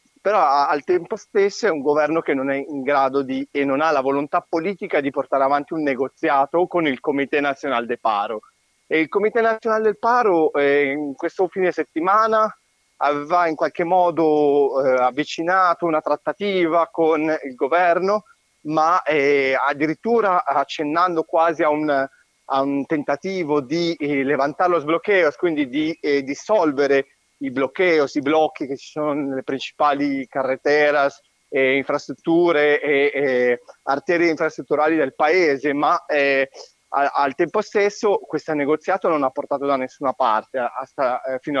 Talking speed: 155 wpm